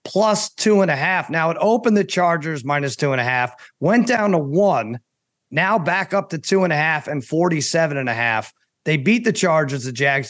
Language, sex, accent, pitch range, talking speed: English, male, American, 140-195 Hz, 220 wpm